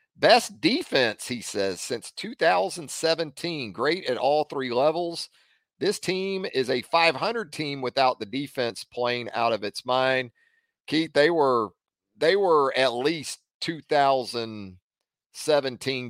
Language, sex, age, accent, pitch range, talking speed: English, male, 40-59, American, 130-195 Hz, 125 wpm